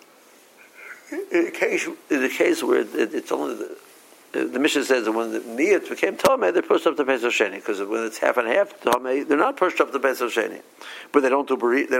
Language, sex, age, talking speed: English, male, 60-79, 215 wpm